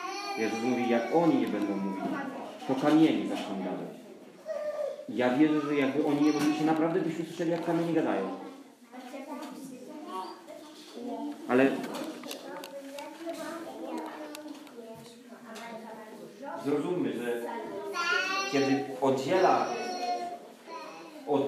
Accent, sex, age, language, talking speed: native, male, 40-59, Polish, 85 wpm